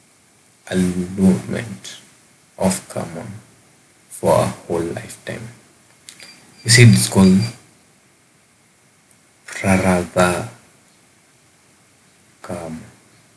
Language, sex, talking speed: Swahili, male, 65 wpm